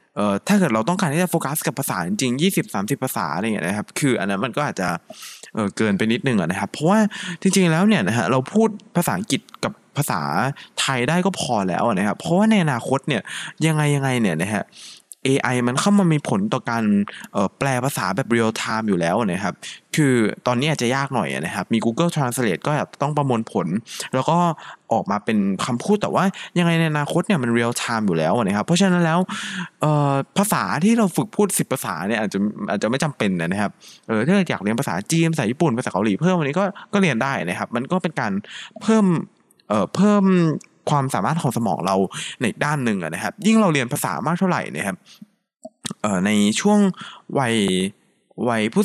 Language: Thai